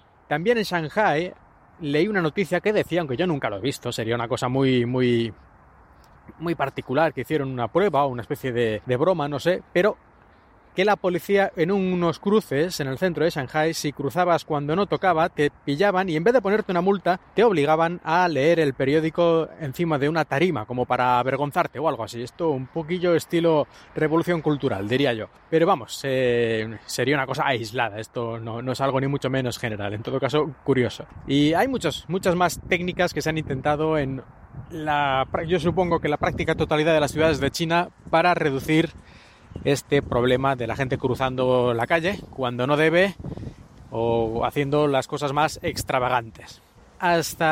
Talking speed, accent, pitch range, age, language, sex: 185 wpm, Spanish, 125-170 Hz, 30-49, Spanish, male